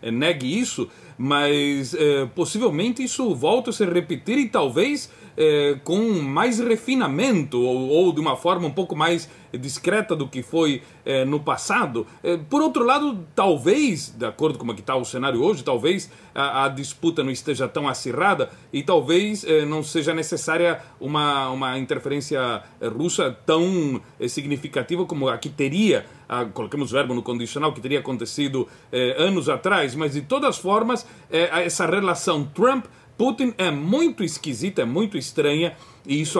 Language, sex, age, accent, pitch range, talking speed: Portuguese, male, 40-59, Brazilian, 135-175 Hz, 165 wpm